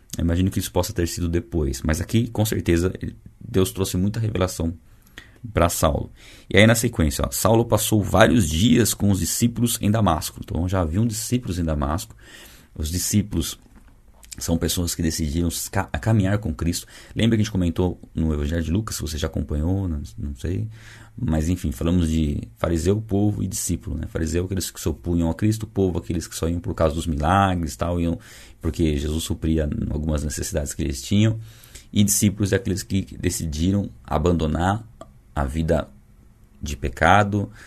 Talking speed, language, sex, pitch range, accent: 170 wpm, Portuguese, male, 80-110 Hz, Brazilian